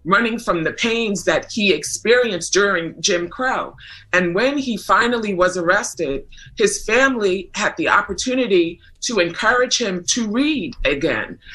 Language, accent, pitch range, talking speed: English, American, 175-240 Hz, 140 wpm